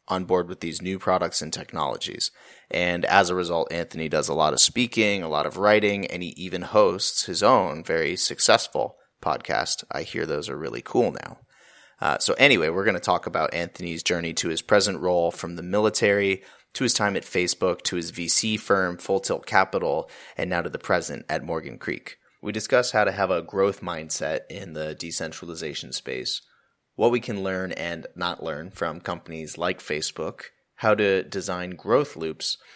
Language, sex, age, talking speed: English, male, 30-49, 190 wpm